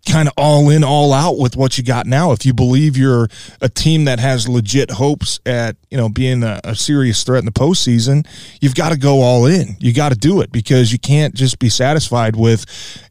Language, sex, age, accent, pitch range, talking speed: English, male, 20-39, American, 120-145 Hz, 230 wpm